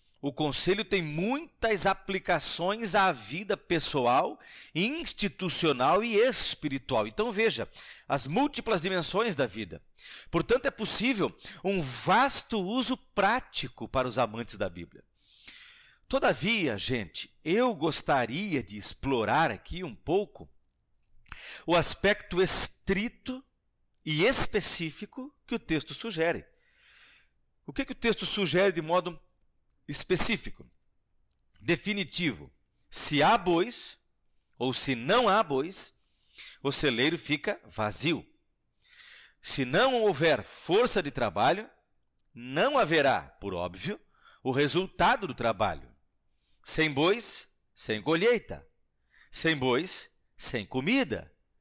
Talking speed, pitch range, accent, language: 105 wpm, 135-210 Hz, Brazilian, Portuguese